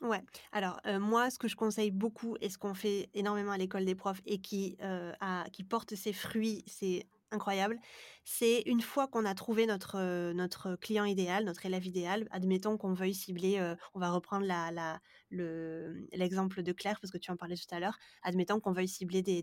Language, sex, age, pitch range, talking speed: French, female, 20-39, 185-215 Hz, 215 wpm